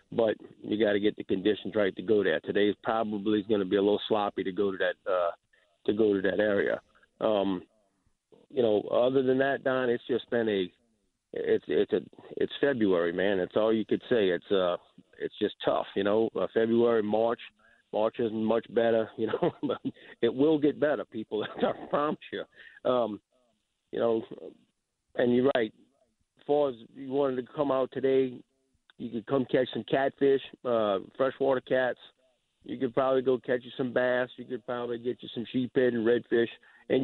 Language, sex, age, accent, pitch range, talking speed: English, male, 50-69, American, 110-130 Hz, 195 wpm